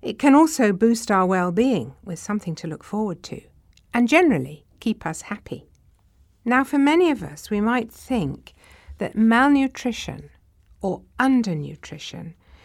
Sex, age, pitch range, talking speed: female, 60-79, 160-235 Hz, 140 wpm